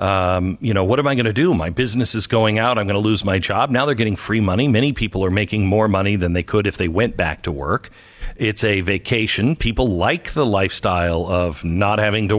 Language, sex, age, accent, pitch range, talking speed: English, male, 50-69, American, 100-130 Hz, 245 wpm